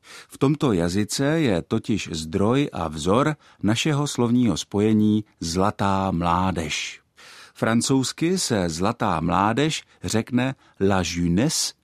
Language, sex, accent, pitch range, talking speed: Czech, male, native, 95-125 Hz, 100 wpm